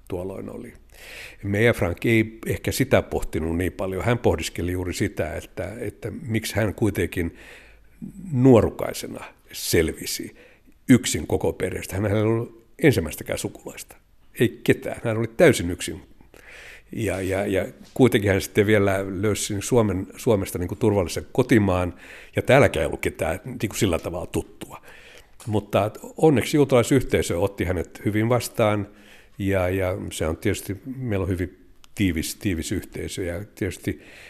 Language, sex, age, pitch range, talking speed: Finnish, male, 60-79, 90-115 Hz, 135 wpm